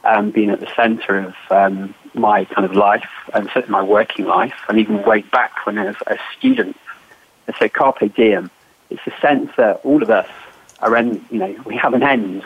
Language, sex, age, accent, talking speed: English, male, 40-59, British, 205 wpm